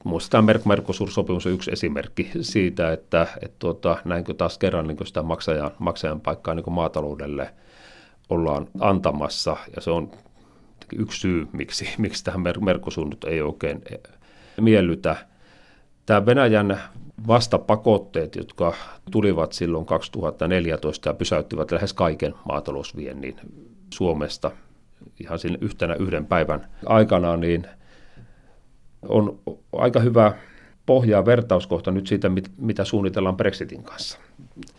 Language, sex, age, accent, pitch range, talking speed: Finnish, male, 40-59, native, 85-105 Hz, 115 wpm